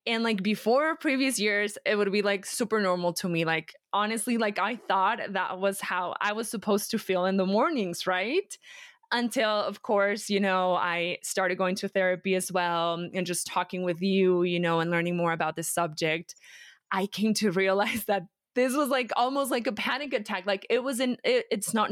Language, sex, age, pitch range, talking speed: English, female, 20-39, 185-225 Hz, 205 wpm